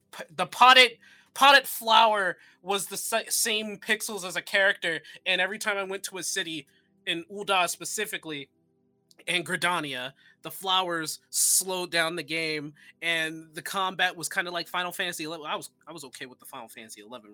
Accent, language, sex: American, English, male